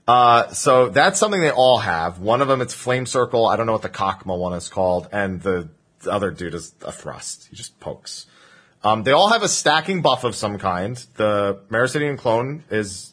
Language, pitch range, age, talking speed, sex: English, 100-150 Hz, 30-49, 215 wpm, male